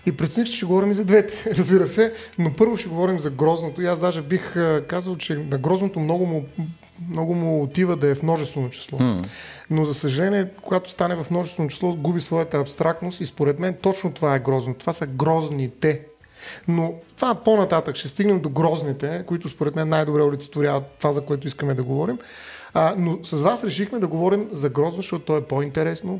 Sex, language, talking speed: male, Bulgarian, 195 wpm